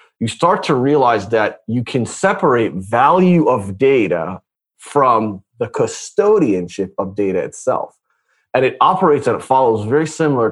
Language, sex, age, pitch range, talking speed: English, male, 30-49, 110-150 Hz, 145 wpm